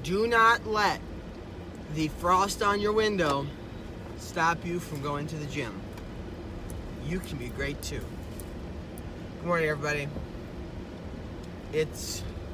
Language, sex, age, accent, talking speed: English, male, 20-39, American, 115 wpm